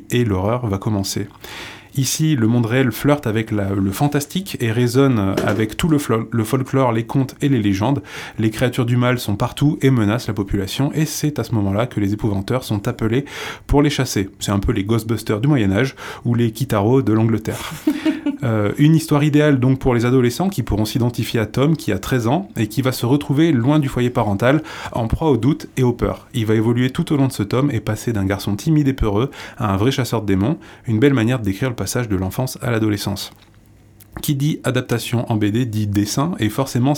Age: 20-39